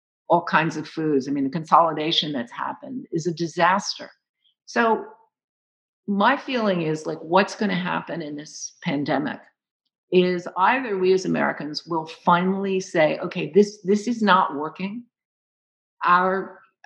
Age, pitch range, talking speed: 50-69, 160-200 Hz, 140 wpm